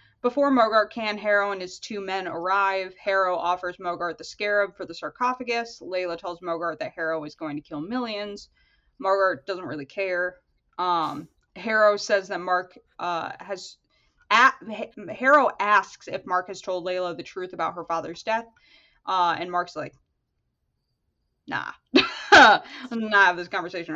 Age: 20-39